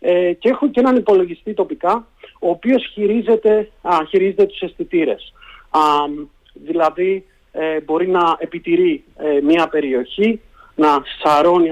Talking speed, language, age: 125 wpm, Greek, 40-59